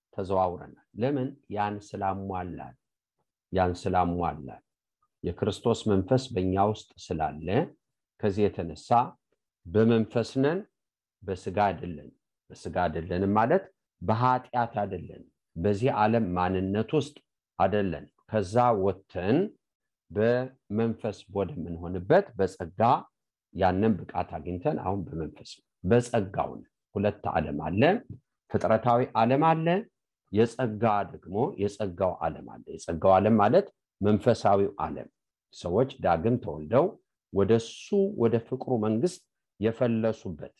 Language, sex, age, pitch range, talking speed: English, male, 50-69, 95-120 Hz, 95 wpm